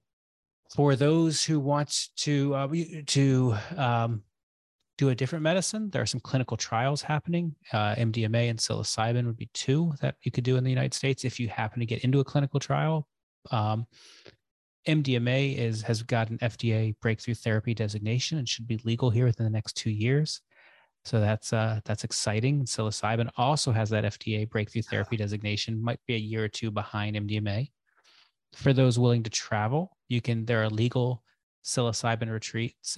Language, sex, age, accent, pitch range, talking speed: English, male, 30-49, American, 110-130 Hz, 175 wpm